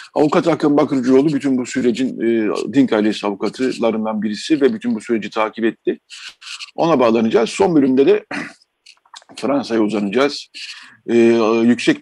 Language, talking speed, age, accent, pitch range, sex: Turkish, 130 wpm, 50-69, native, 110-135 Hz, male